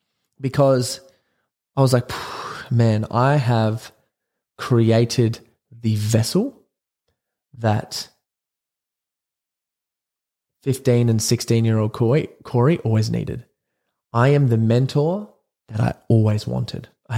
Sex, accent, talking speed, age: male, Australian, 90 wpm, 20-39